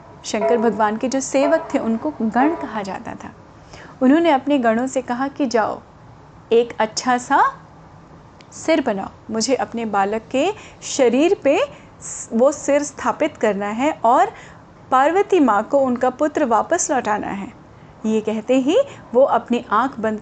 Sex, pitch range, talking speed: female, 220-290 Hz, 150 wpm